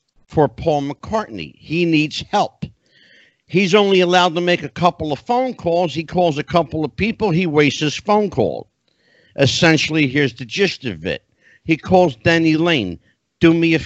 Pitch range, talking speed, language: 140-180 Hz, 175 wpm, English